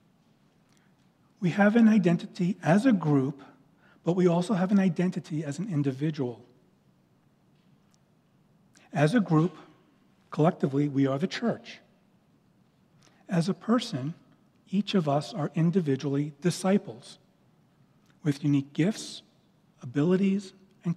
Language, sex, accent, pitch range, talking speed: English, male, American, 145-185 Hz, 110 wpm